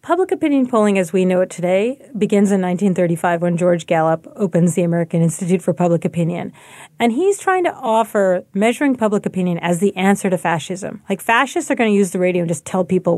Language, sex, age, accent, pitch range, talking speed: English, female, 40-59, American, 180-225 Hz, 210 wpm